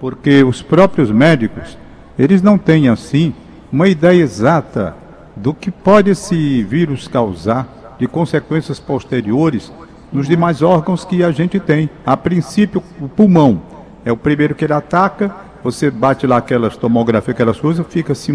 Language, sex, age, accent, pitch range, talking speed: Portuguese, male, 60-79, Brazilian, 125-175 Hz, 150 wpm